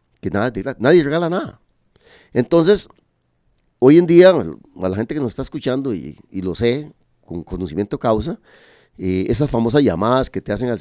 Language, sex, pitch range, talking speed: Spanish, male, 100-160 Hz, 165 wpm